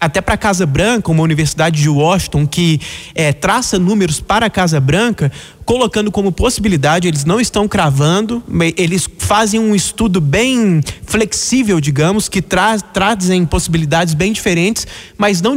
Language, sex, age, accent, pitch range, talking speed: Portuguese, male, 20-39, Brazilian, 155-220 Hz, 145 wpm